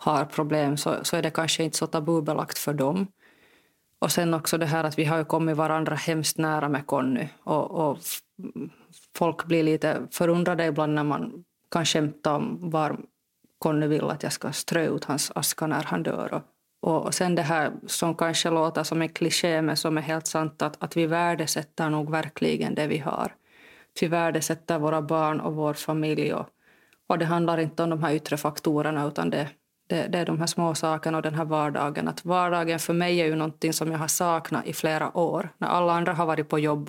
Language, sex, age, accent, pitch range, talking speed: Swedish, female, 30-49, Finnish, 155-170 Hz, 205 wpm